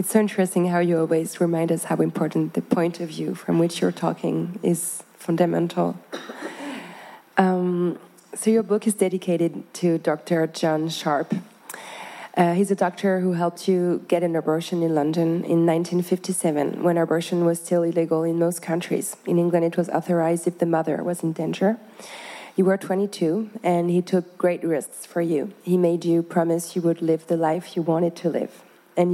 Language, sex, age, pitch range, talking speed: French, female, 20-39, 170-185 Hz, 180 wpm